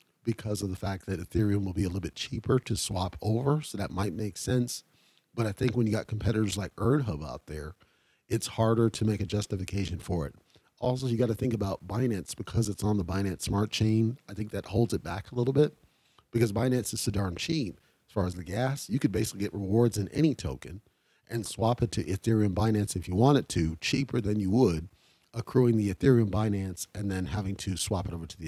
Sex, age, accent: male, 40-59, American